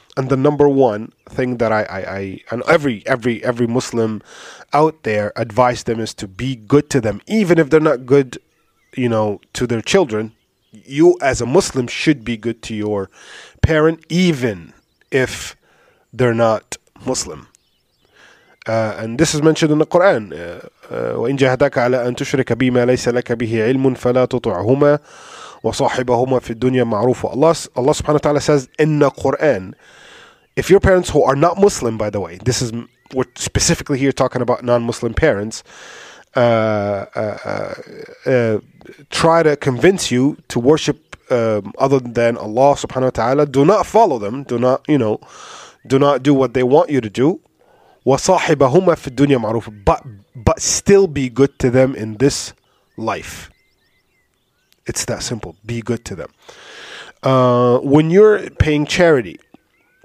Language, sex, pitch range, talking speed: English, male, 115-145 Hz, 155 wpm